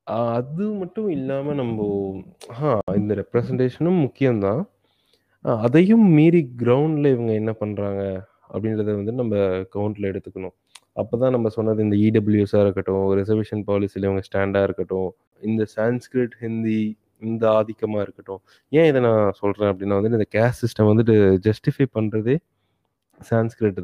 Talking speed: 125 wpm